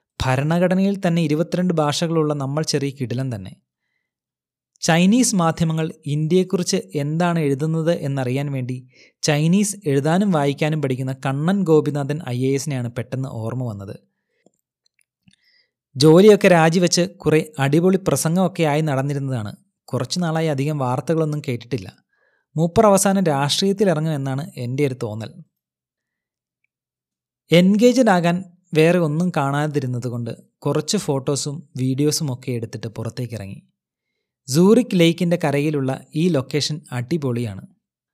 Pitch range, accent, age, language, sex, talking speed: 135-170 Hz, native, 30-49, Malayalam, male, 95 wpm